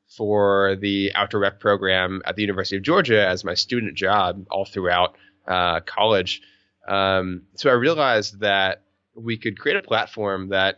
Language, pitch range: English, 100-115 Hz